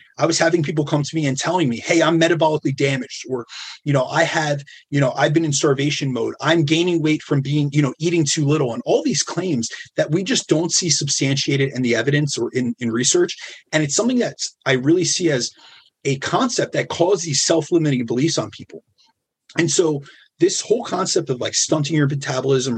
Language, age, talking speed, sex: English, 30-49, 210 wpm, male